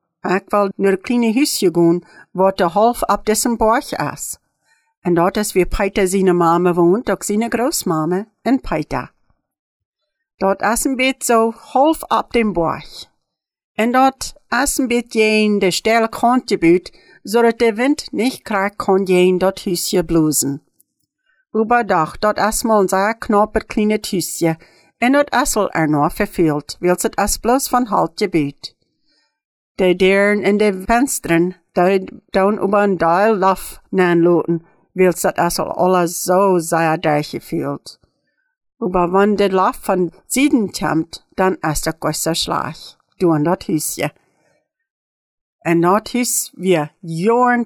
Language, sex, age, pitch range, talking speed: English, female, 60-79, 175-235 Hz, 145 wpm